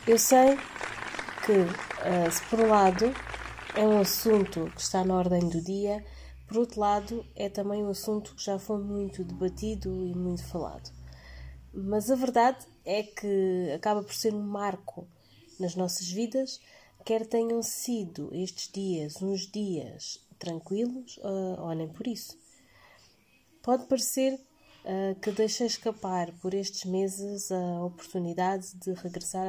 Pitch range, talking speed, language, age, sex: 185-215 Hz, 140 wpm, Portuguese, 20-39, female